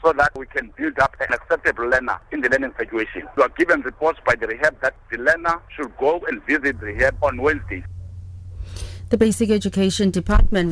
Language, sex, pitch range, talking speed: English, male, 150-195 Hz, 195 wpm